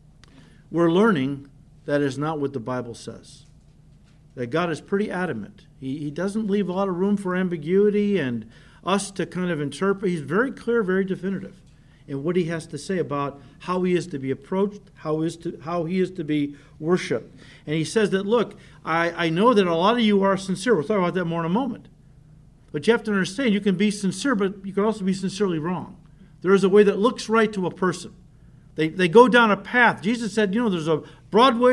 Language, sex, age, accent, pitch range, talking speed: English, male, 50-69, American, 150-215 Hz, 225 wpm